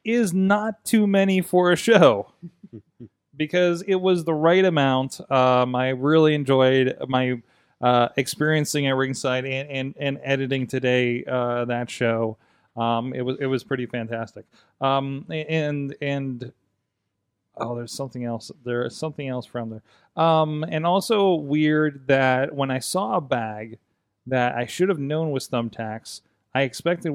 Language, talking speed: English, 155 wpm